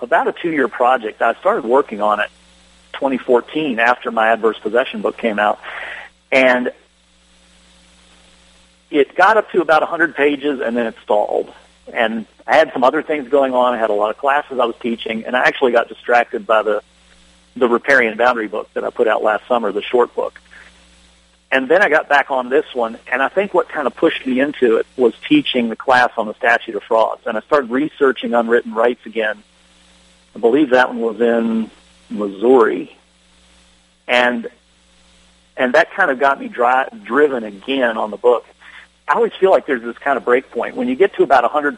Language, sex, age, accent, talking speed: English, male, 40-59, American, 195 wpm